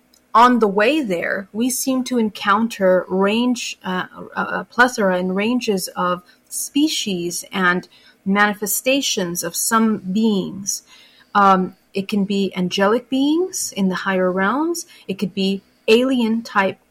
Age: 30-49